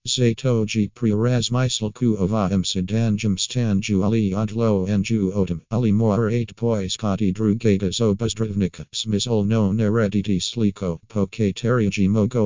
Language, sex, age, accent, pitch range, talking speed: English, male, 50-69, American, 95-110 Hz, 105 wpm